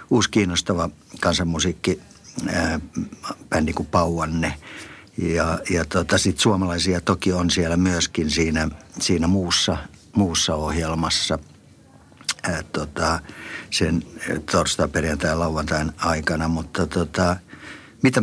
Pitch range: 80-100 Hz